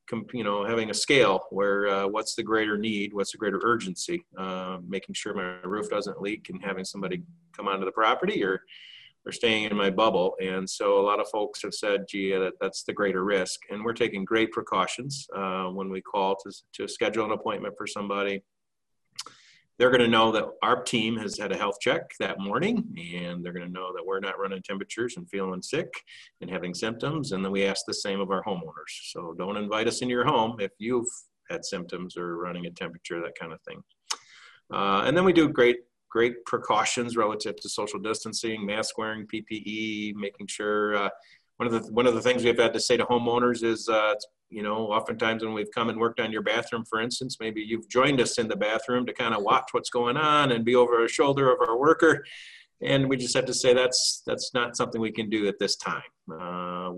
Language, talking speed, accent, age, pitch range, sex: English, 220 wpm, American, 30-49, 100-125 Hz, male